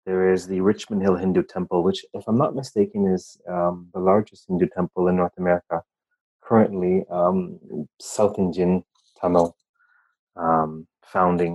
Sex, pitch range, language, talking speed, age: male, 90-100 Hz, English, 145 wpm, 30-49